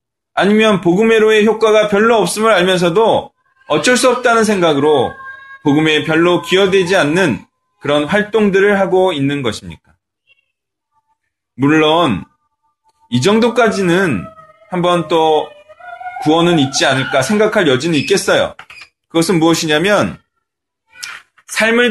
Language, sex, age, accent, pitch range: Korean, male, 20-39, native, 145-225 Hz